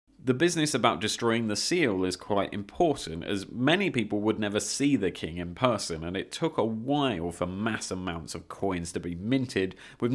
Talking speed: 195 wpm